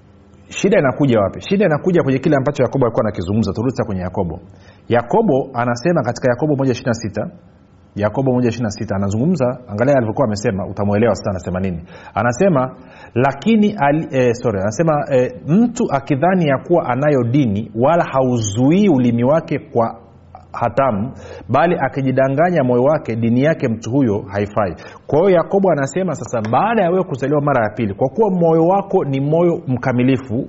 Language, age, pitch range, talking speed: Swahili, 40-59, 110-150 Hz, 145 wpm